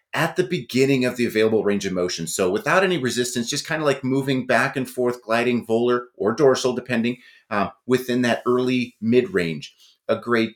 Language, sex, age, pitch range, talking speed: English, male, 30-49, 115-150 Hz, 190 wpm